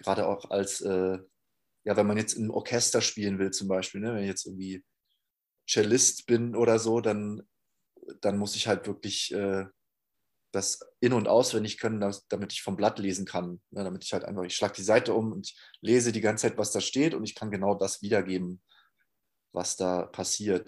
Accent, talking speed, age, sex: German, 200 wpm, 20-39, male